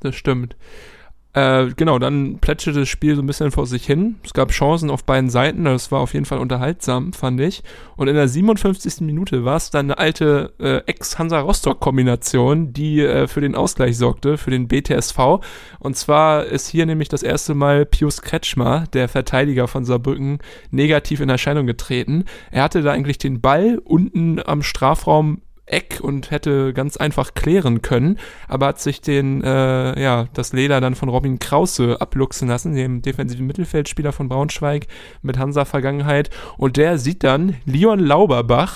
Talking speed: 170 wpm